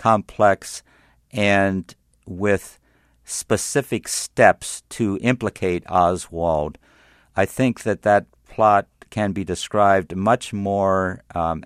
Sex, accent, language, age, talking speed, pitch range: male, American, English, 50-69, 100 wpm, 85-100 Hz